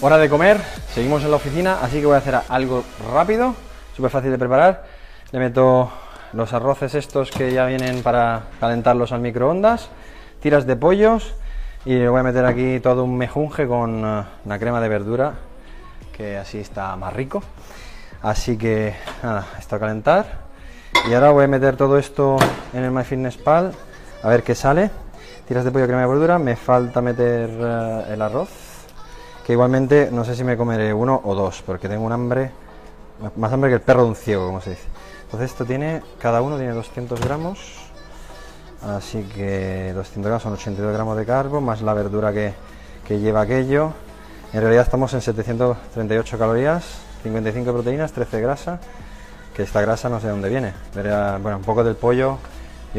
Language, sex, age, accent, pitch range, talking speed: Spanish, male, 20-39, Spanish, 105-130 Hz, 180 wpm